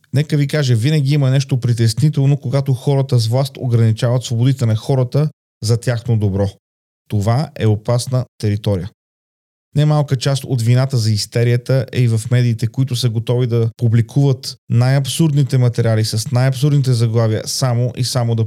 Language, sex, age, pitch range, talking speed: Bulgarian, male, 30-49, 110-135 Hz, 150 wpm